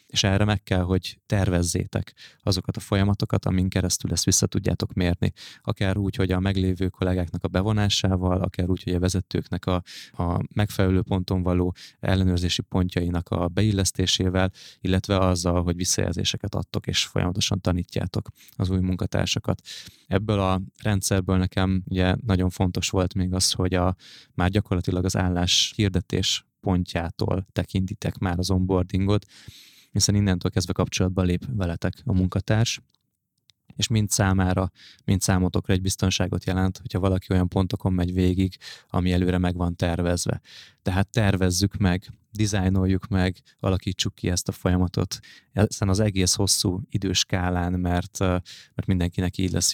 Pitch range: 90-100 Hz